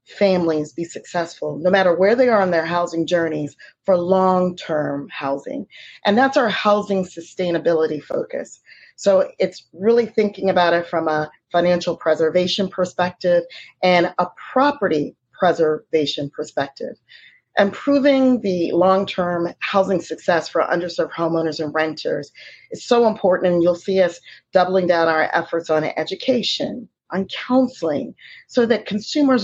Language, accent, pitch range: English, American, 165-200 Hz